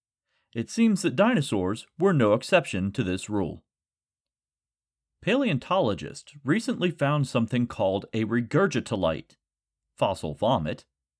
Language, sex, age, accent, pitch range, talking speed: English, male, 40-59, American, 110-175 Hz, 100 wpm